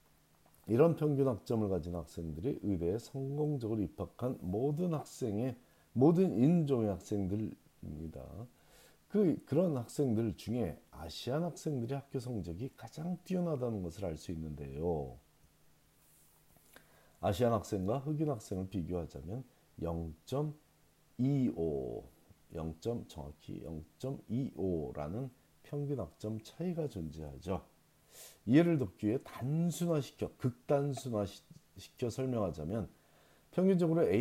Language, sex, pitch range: Korean, male, 85-140 Hz